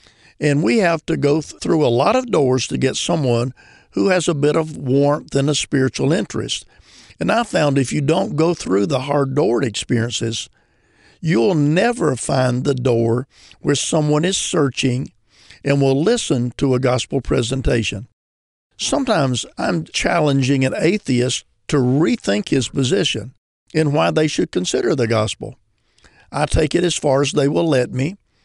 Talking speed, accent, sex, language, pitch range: 160 wpm, American, male, English, 125-150 Hz